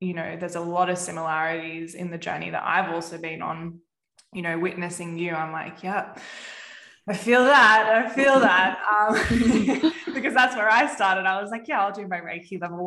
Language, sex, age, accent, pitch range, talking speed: English, female, 20-39, Australian, 170-205 Hz, 200 wpm